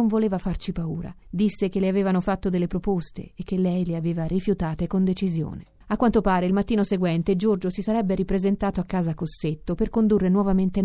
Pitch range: 170-205 Hz